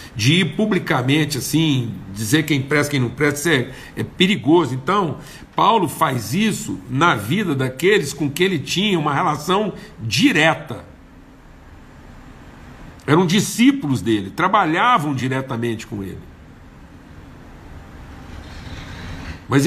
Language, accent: Portuguese, Brazilian